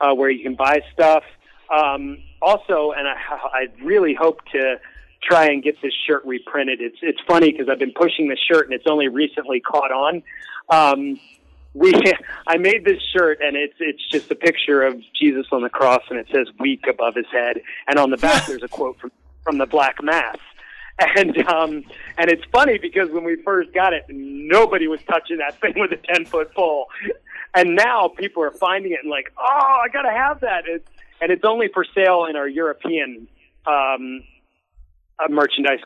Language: English